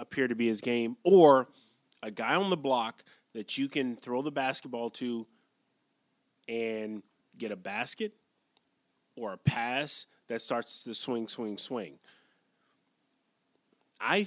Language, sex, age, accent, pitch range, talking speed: English, male, 30-49, American, 120-170 Hz, 135 wpm